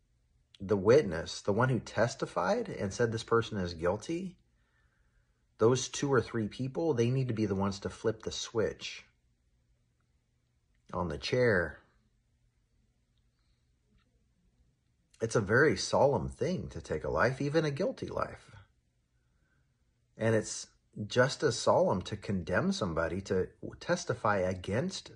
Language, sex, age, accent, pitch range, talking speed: English, male, 40-59, American, 90-120 Hz, 130 wpm